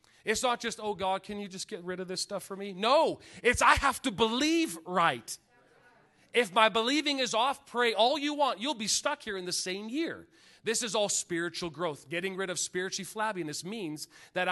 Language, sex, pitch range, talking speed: English, male, 170-230 Hz, 210 wpm